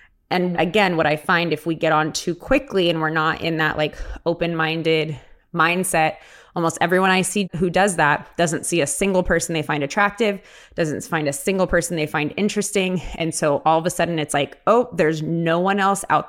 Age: 20-39